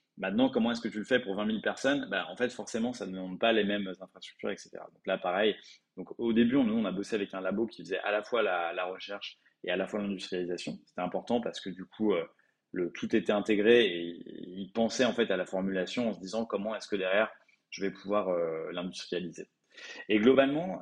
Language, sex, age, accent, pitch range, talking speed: French, male, 20-39, French, 95-115 Hz, 235 wpm